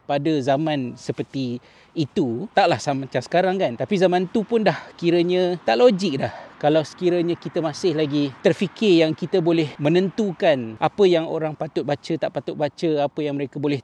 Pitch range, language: 140-180 Hz, Malay